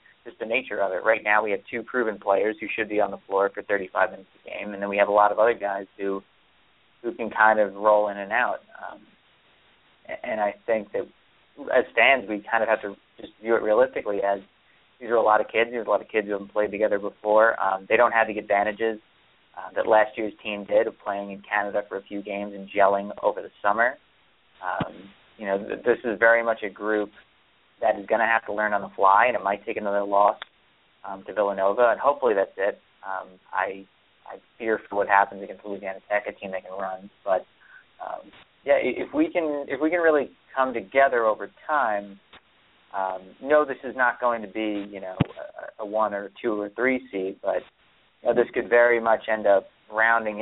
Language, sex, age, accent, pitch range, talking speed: English, male, 30-49, American, 100-115 Hz, 225 wpm